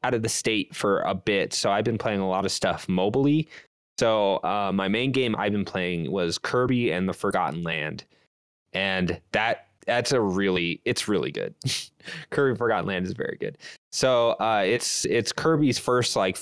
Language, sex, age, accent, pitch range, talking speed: English, male, 20-39, American, 90-120 Hz, 185 wpm